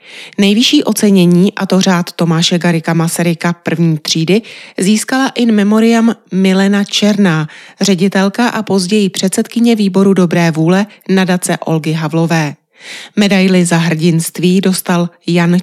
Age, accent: 30-49, native